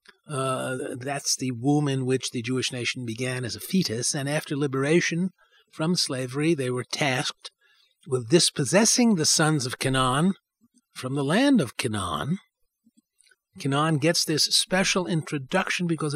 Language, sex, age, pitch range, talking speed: English, male, 50-69, 135-195 Hz, 140 wpm